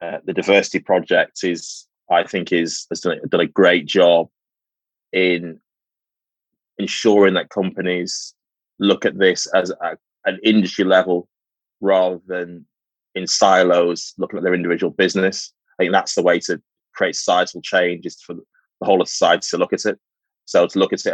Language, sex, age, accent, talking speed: English, male, 20-39, British, 175 wpm